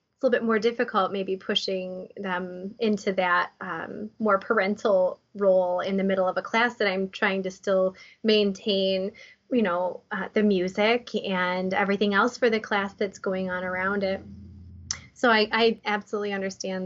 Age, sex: 20-39, female